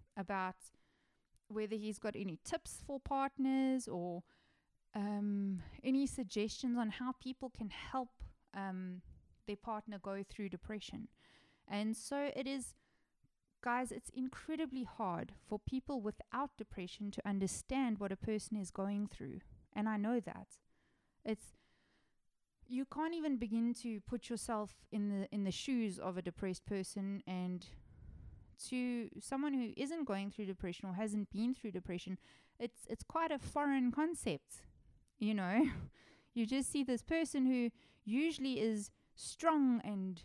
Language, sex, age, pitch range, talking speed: English, female, 30-49, 195-255 Hz, 140 wpm